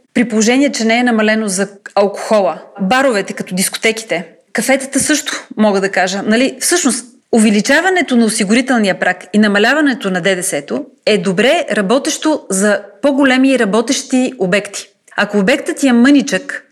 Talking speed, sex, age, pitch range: 135 wpm, female, 30-49, 210-265 Hz